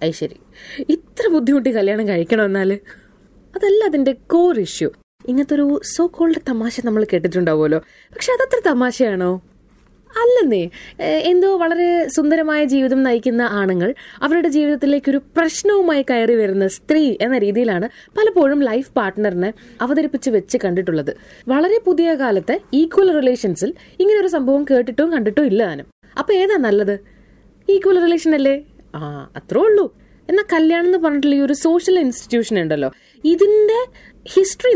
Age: 20-39